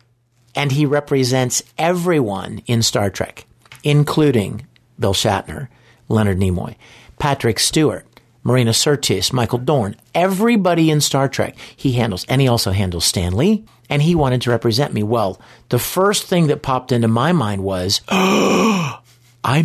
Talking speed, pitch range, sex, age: 145 wpm, 110-140 Hz, male, 50-69